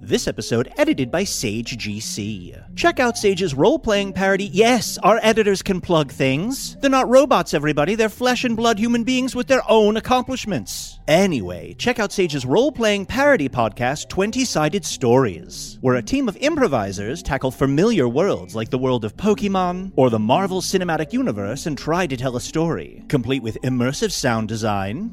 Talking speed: 165 wpm